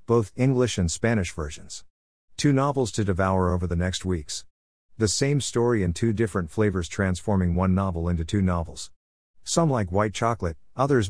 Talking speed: 170 wpm